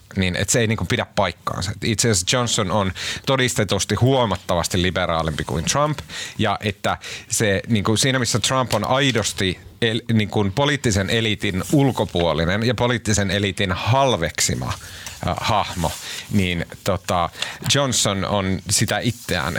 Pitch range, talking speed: 95-120 Hz, 135 wpm